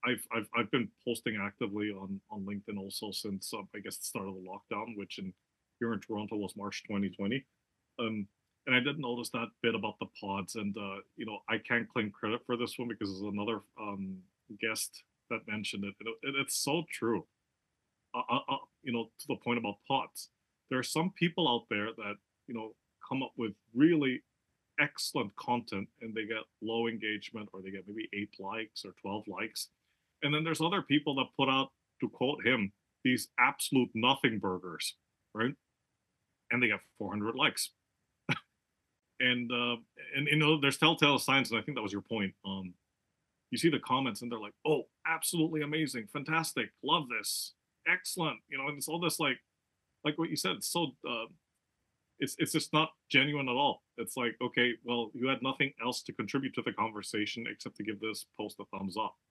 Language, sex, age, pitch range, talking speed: English, male, 30-49, 105-140 Hz, 195 wpm